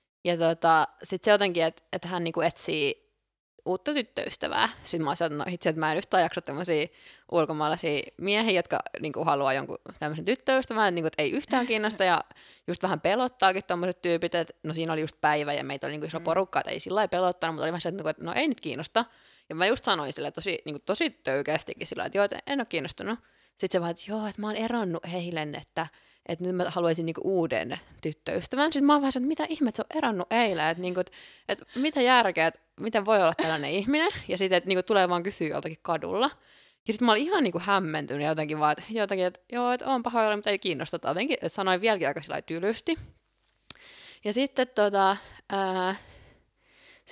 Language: Finnish